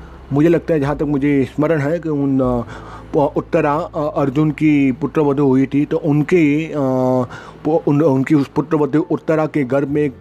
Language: Hindi